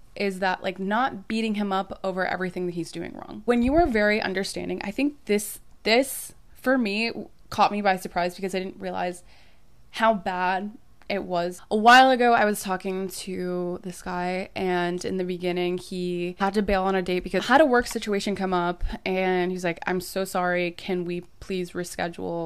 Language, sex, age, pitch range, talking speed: English, female, 20-39, 180-210 Hz, 195 wpm